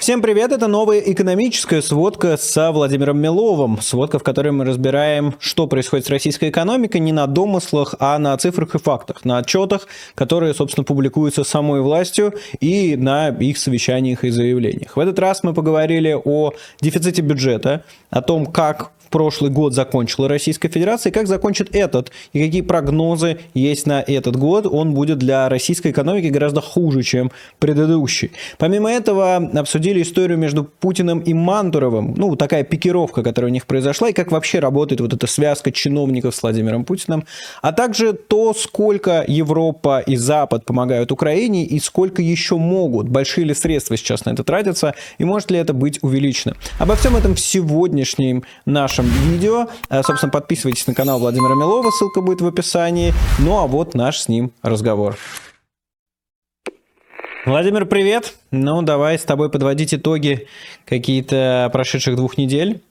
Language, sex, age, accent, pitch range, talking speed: Russian, male, 20-39, native, 135-180 Hz, 155 wpm